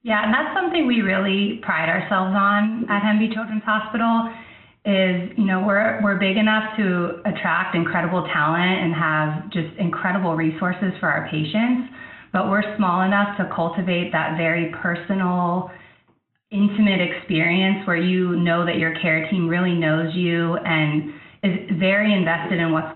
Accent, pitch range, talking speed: American, 160-195 Hz, 155 wpm